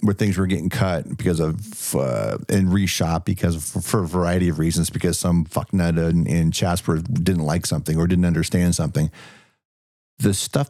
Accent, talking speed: American, 180 wpm